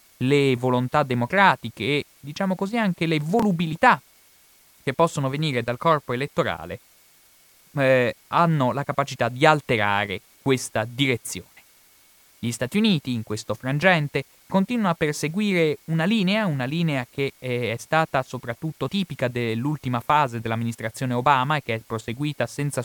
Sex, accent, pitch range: male, native, 115-155 Hz